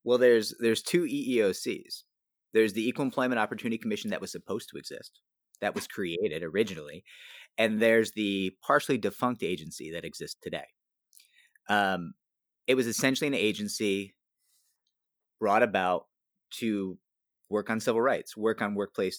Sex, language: male, English